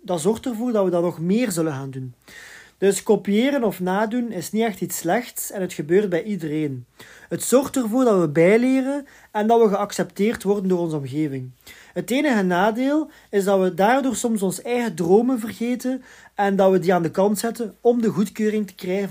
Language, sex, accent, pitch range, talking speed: Dutch, male, Dutch, 175-225 Hz, 200 wpm